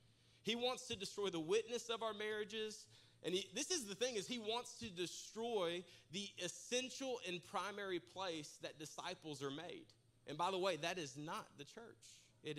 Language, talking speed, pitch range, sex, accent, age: English, 180 wpm, 135-200 Hz, male, American, 30-49